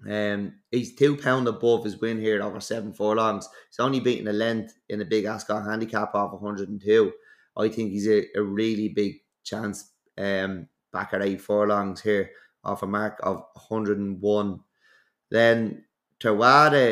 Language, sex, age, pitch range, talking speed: English, male, 20-39, 100-110 Hz, 180 wpm